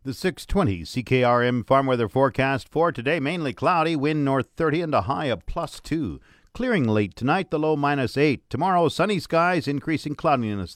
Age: 50-69